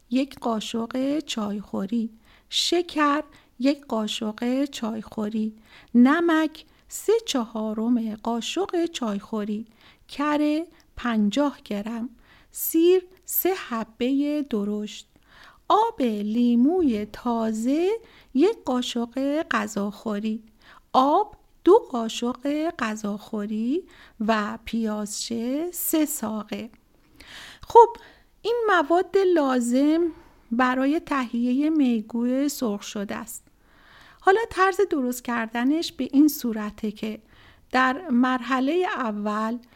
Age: 40-59